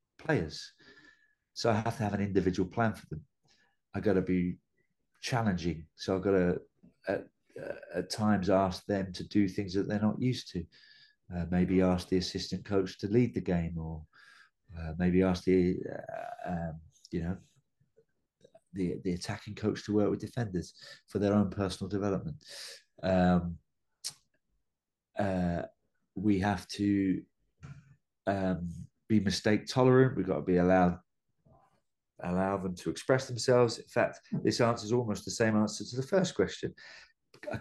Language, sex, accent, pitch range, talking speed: English, male, British, 95-115 Hz, 155 wpm